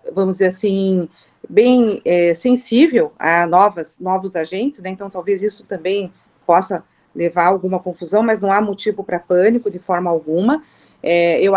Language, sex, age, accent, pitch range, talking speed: Portuguese, female, 40-59, Brazilian, 190-235 Hz, 145 wpm